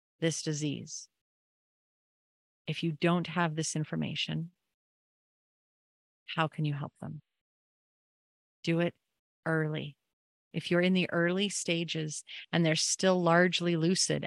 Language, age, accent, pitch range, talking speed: English, 30-49, American, 135-170 Hz, 115 wpm